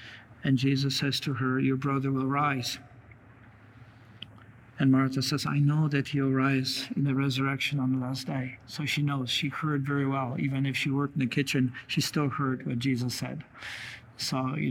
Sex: male